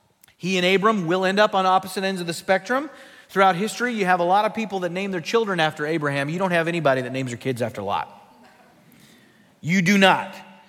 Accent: American